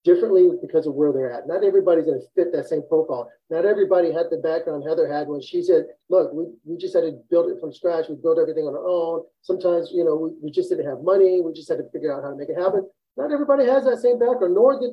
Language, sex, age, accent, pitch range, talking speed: English, male, 40-59, American, 180-290 Hz, 275 wpm